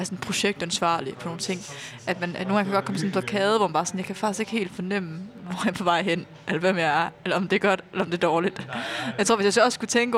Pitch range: 175-200 Hz